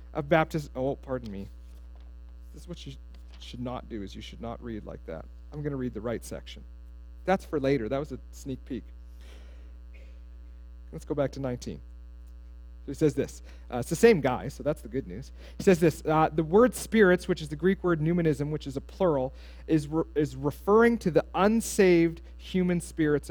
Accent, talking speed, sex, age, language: American, 200 wpm, male, 40-59, English